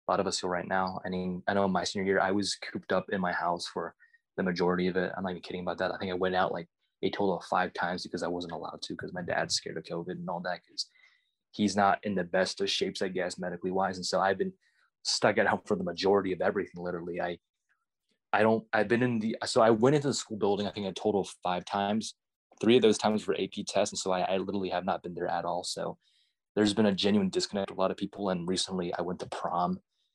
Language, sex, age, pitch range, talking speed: English, male, 20-39, 95-110 Hz, 275 wpm